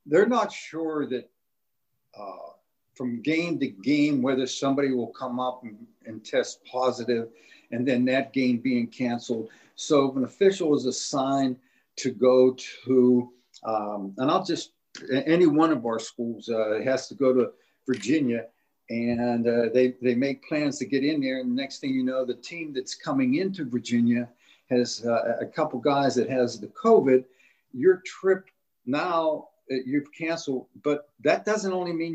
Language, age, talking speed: English, 60-79, 165 wpm